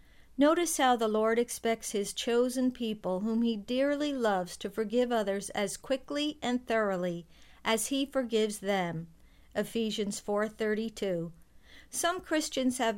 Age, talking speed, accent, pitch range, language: 50-69, 130 wpm, American, 210-255 Hz, English